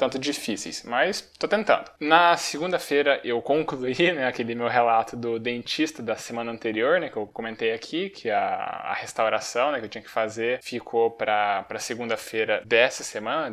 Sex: male